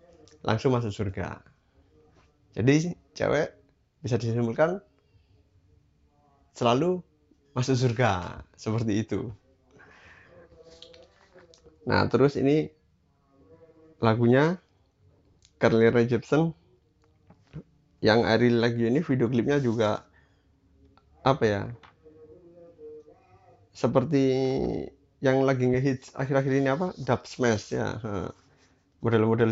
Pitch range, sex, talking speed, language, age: 105-140 Hz, male, 80 wpm, Indonesian, 20-39